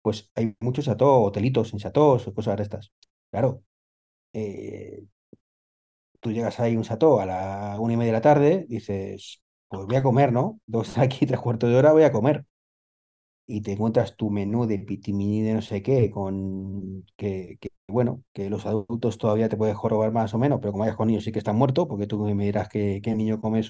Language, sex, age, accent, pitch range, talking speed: Spanish, male, 30-49, Spanish, 100-125 Hz, 210 wpm